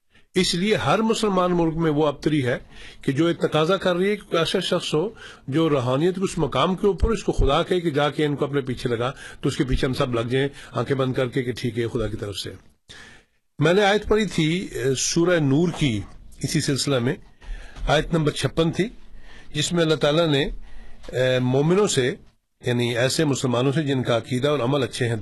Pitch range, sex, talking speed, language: 130-170 Hz, male, 210 wpm, Urdu